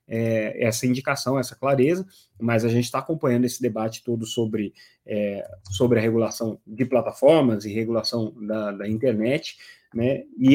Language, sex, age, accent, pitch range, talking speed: Portuguese, male, 30-49, Brazilian, 115-135 Hz, 140 wpm